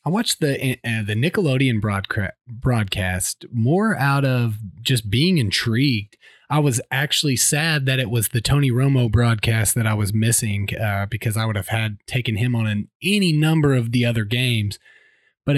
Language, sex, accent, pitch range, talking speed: English, male, American, 110-145 Hz, 175 wpm